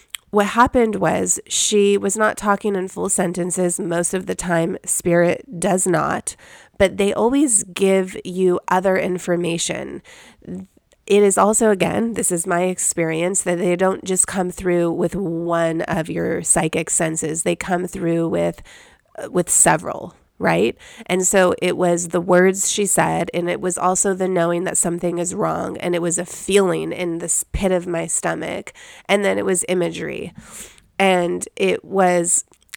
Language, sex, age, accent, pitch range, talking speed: English, female, 30-49, American, 175-200 Hz, 160 wpm